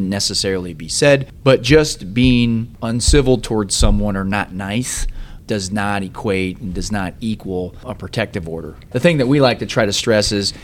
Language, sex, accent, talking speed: English, male, American, 180 wpm